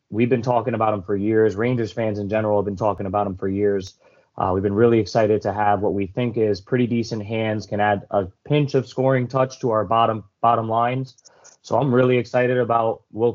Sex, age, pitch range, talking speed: male, 20-39, 105-125 Hz, 225 wpm